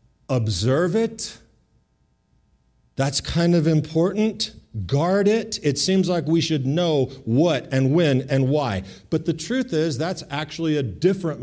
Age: 40-59